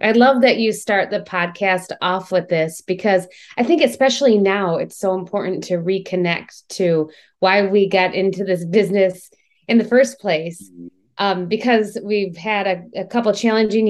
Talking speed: 175 wpm